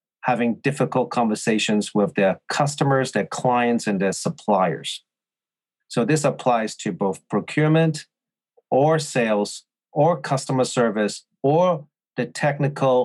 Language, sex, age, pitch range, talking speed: English, male, 40-59, 115-145 Hz, 115 wpm